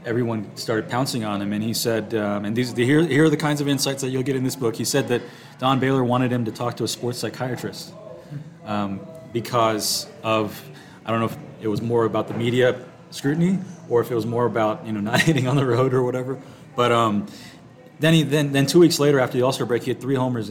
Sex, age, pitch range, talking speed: male, 30-49, 110-145 Hz, 245 wpm